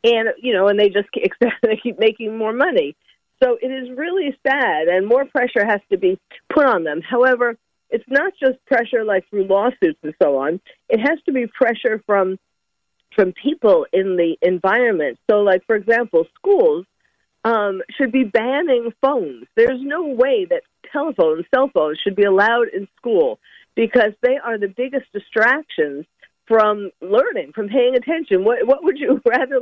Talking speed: 170 wpm